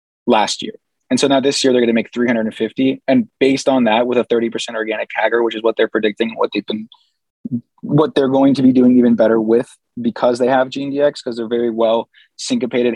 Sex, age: male, 20-39